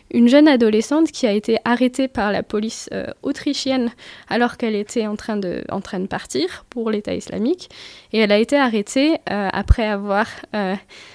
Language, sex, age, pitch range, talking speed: French, female, 10-29, 200-240 Hz, 185 wpm